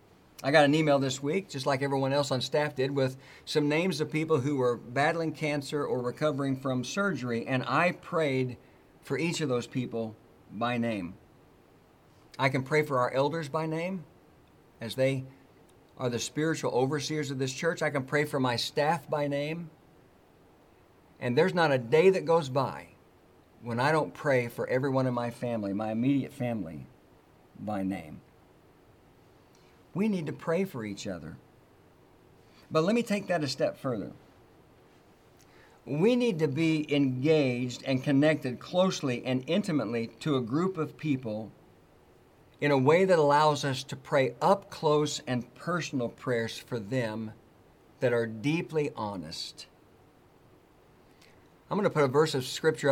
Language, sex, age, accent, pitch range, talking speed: English, male, 50-69, American, 120-155 Hz, 160 wpm